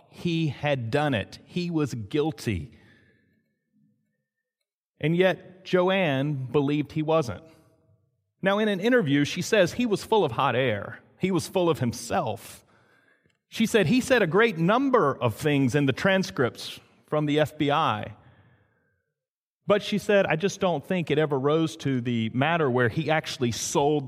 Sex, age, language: male, 40-59, English